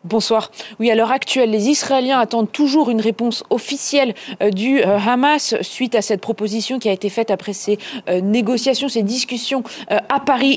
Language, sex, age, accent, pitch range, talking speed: French, female, 20-39, French, 215-250 Hz, 185 wpm